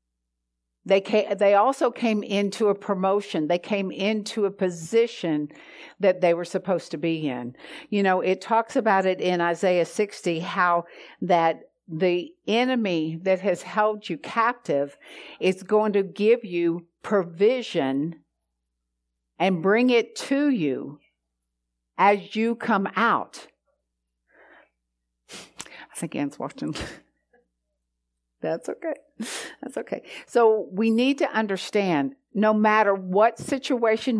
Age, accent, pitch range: 50-69, American, 145-215 Hz